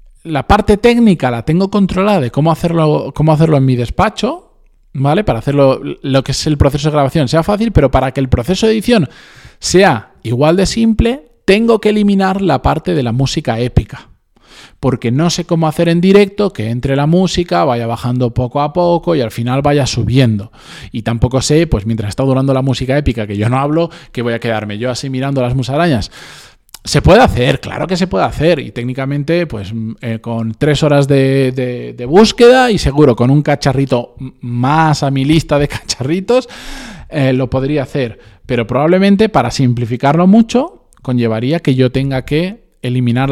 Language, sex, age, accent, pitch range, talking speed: Spanish, male, 20-39, Spanish, 125-175 Hz, 185 wpm